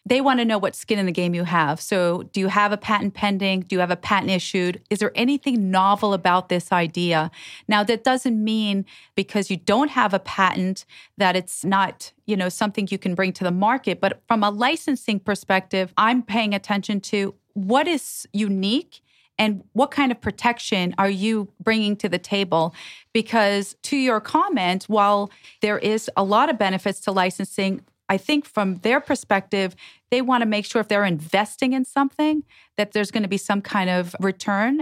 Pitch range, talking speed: 190-230 Hz, 195 wpm